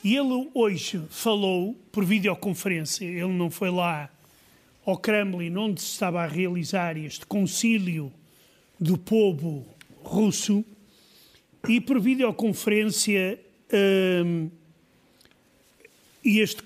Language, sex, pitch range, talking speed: Portuguese, male, 180-225 Hz, 95 wpm